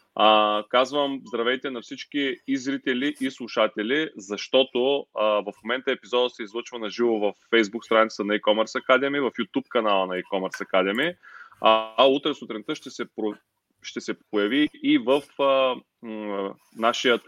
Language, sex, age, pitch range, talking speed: Bulgarian, male, 30-49, 105-135 Hz, 145 wpm